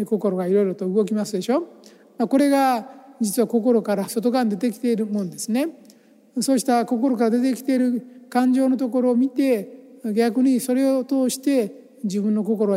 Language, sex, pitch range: Japanese, male, 195-240 Hz